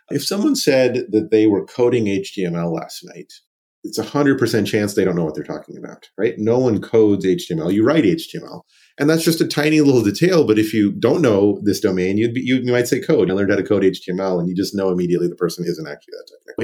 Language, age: English, 40-59